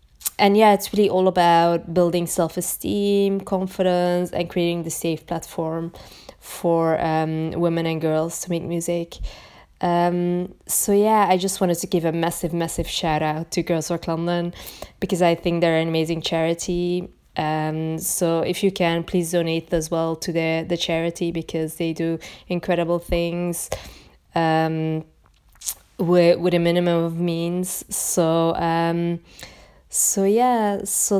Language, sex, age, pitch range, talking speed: English, female, 20-39, 165-185 Hz, 150 wpm